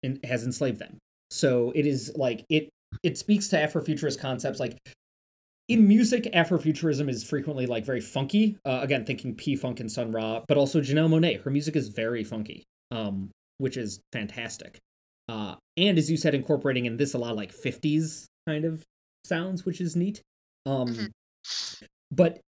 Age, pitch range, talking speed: 20-39, 110-145 Hz, 170 wpm